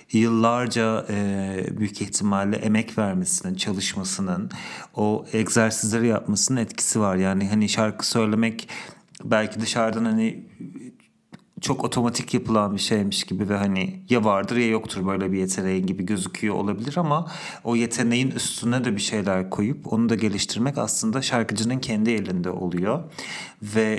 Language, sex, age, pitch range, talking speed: English, male, 40-59, 100-130 Hz, 135 wpm